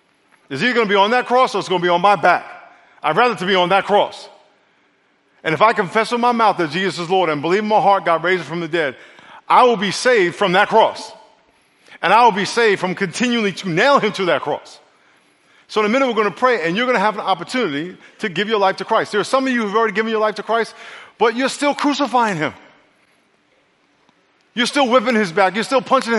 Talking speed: 255 wpm